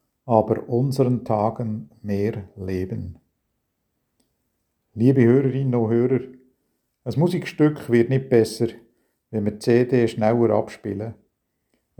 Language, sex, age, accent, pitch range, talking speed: German, male, 50-69, Austrian, 110-125 Hz, 100 wpm